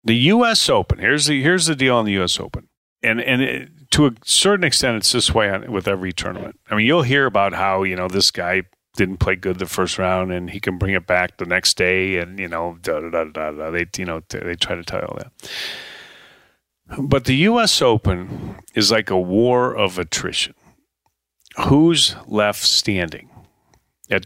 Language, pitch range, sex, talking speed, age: English, 95-145 Hz, male, 200 wpm, 40-59